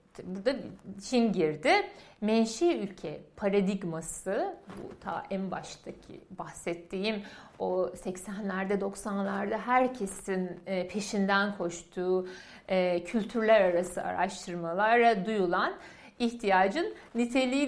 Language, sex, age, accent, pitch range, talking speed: Turkish, female, 60-79, native, 185-265 Hz, 80 wpm